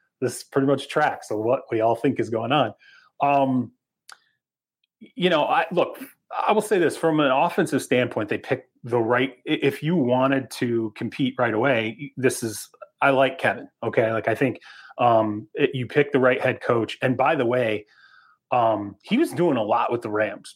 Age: 30-49